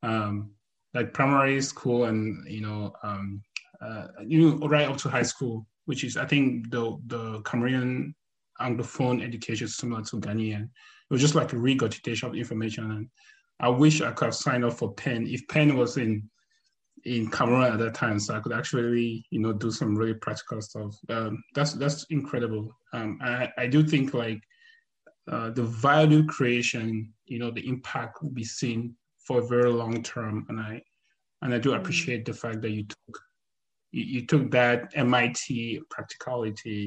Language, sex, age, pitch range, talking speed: English, male, 20-39, 110-140 Hz, 175 wpm